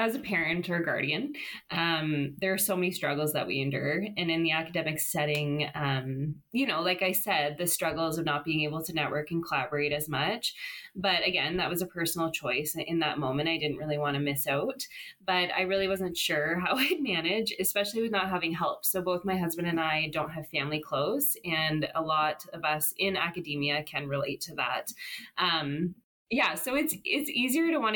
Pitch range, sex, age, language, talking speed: 155-205 Hz, female, 20-39, English, 205 wpm